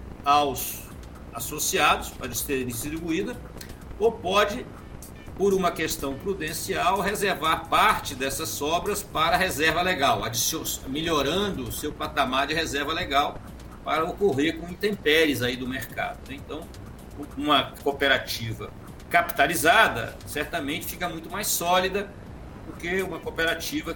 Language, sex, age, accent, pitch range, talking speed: Portuguese, male, 60-79, Brazilian, 130-195 Hz, 115 wpm